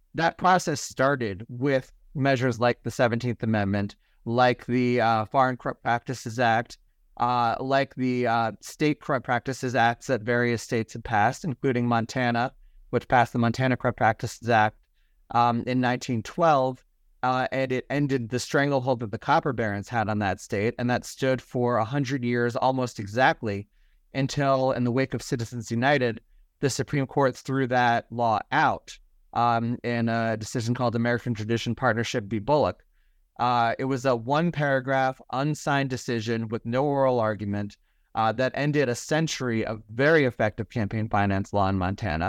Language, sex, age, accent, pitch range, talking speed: English, male, 30-49, American, 115-135 Hz, 160 wpm